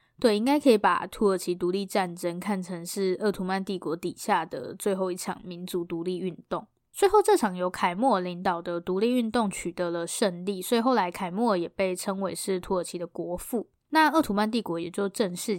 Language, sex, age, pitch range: Chinese, female, 10-29, 180-230 Hz